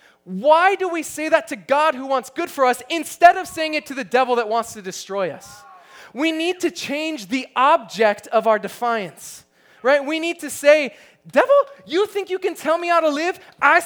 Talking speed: 210 wpm